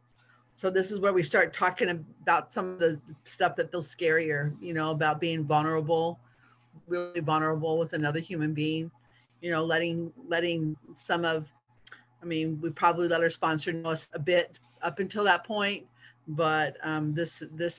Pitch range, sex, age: 145-170 Hz, female, 40-59